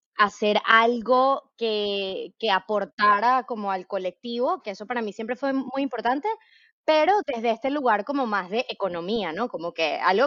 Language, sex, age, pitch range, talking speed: Spanish, female, 20-39, 195-255 Hz, 165 wpm